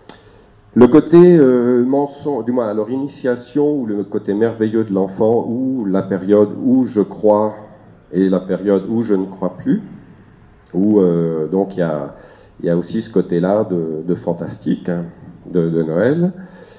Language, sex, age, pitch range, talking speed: French, male, 50-69, 85-110 Hz, 170 wpm